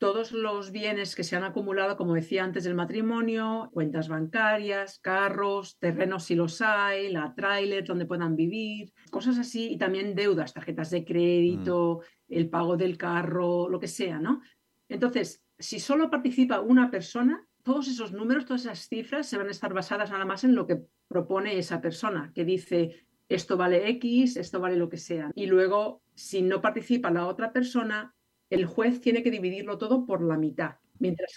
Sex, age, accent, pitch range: female, 50-69, Spanish, 175-225 Hz